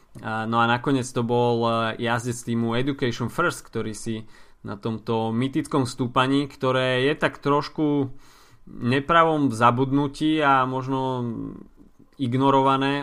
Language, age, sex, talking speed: Slovak, 20-39, male, 110 wpm